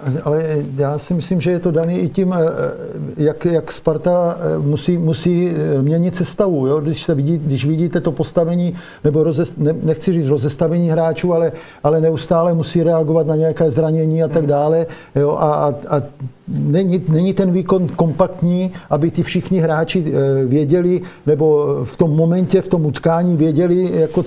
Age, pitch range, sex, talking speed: 50-69, 155-175 Hz, male, 150 wpm